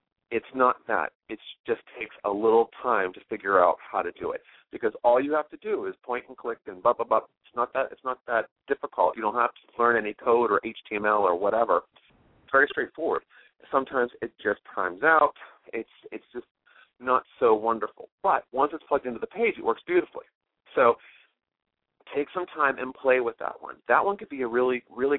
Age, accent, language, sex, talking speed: 40-59, American, English, male, 210 wpm